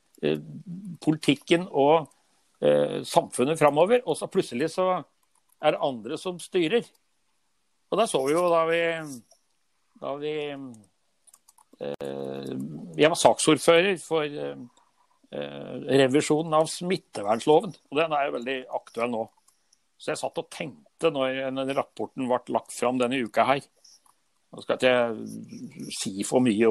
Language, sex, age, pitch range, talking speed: English, male, 60-79, 125-175 Hz, 135 wpm